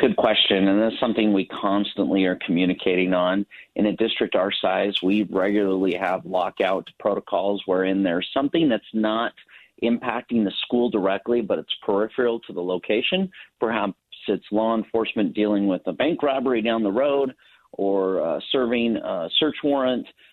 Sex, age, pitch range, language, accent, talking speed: male, 40-59, 95-120 Hz, English, American, 155 wpm